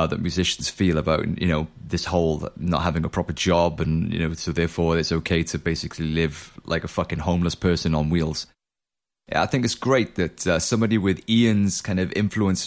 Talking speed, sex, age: 205 wpm, male, 30-49